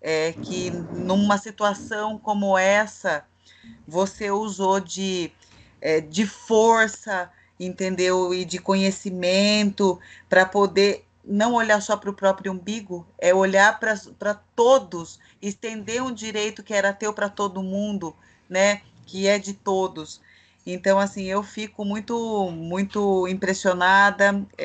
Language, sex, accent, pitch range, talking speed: Portuguese, female, Brazilian, 170-200 Hz, 115 wpm